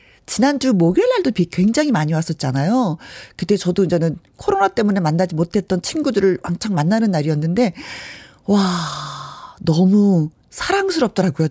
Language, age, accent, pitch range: Korean, 40-59, native, 175-255 Hz